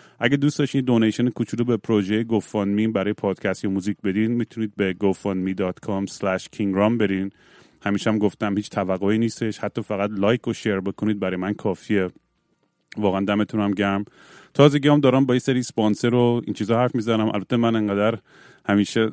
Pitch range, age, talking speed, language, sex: 100-120 Hz, 30-49, 155 wpm, Persian, male